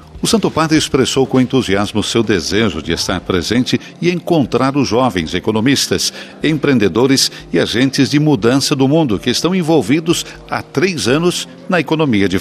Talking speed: 155 wpm